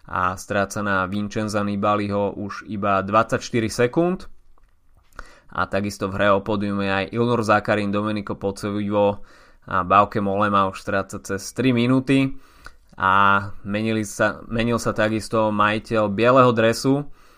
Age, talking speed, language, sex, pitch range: 20-39, 130 wpm, Slovak, male, 105-120 Hz